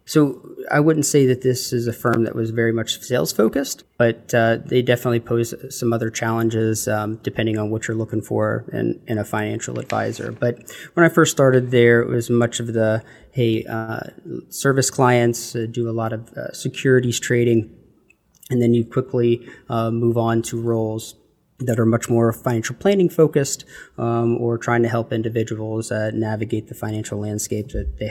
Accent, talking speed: American, 185 wpm